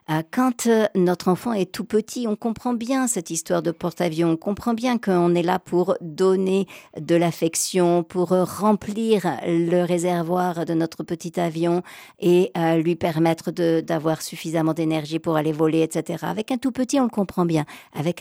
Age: 50-69